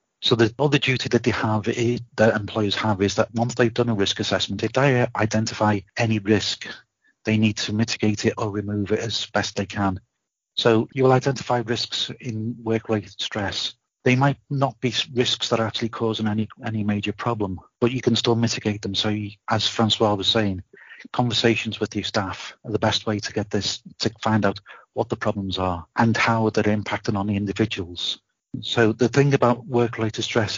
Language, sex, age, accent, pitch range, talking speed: English, male, 40-59, British, 100-115 Hz, 195 wpm